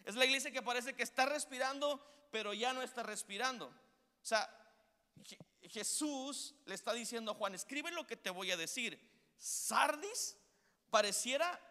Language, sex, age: Spanish, male, 40-59